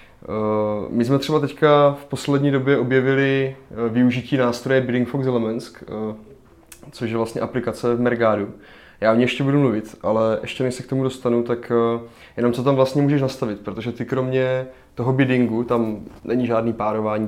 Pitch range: 115-130 Hz